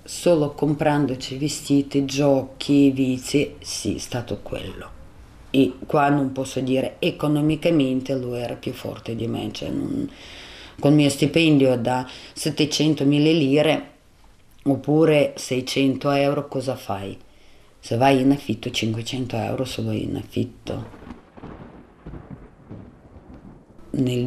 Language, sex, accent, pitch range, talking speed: Italian, female, native, 110-145 Hz, 105 wpm